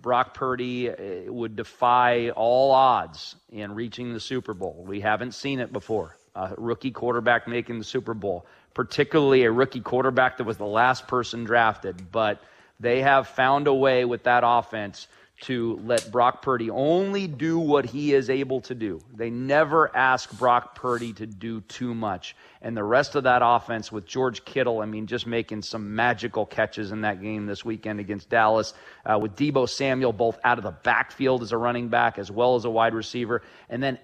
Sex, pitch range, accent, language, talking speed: male, 115-140 Hz, American, English, 190 wpm